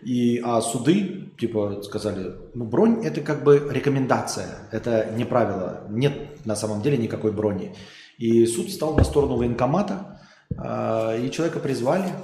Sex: male